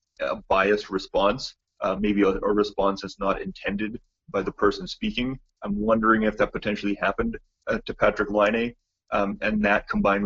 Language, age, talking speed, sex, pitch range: English, 30-49, 170 wpm, male, 95-105 Hz